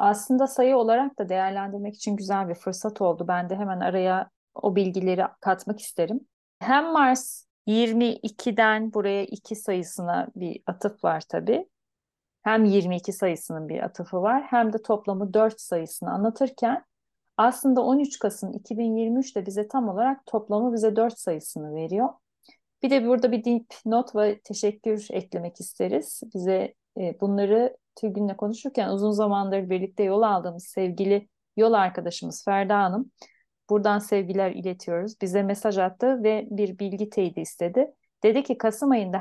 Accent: native